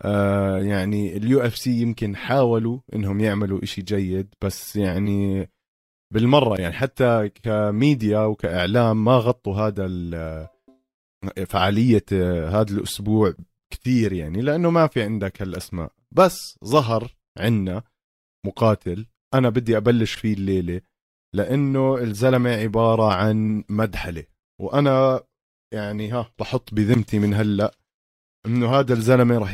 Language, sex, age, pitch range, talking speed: Arabic, male, 30-49, 95-120 Hz, 110 wpm